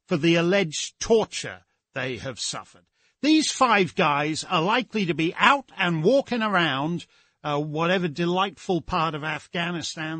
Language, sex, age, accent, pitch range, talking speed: English, male, 50-69, British, 175-245 Hz, 140 wpm